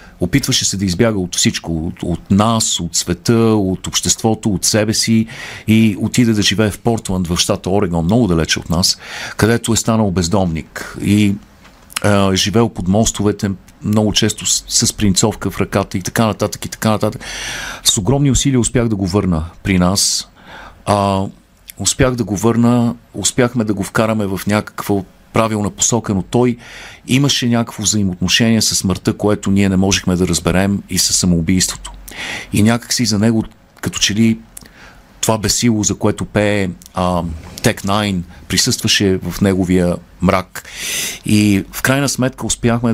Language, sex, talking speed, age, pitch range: Bulgarian, male, 160 wpm, 50-69, 95-110 Hz